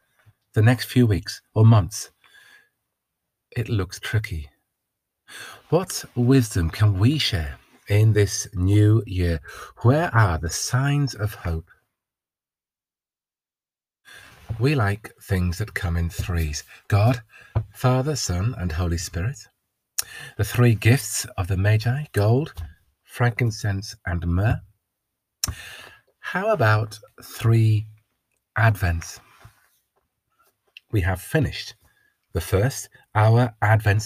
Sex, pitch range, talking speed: male, 95-125 Hz, 100 wpm